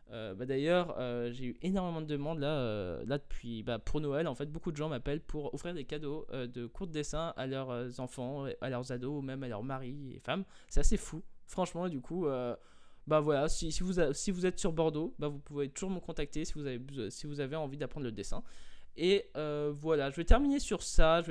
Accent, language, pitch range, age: French, French, 135-170 Hz, 20-39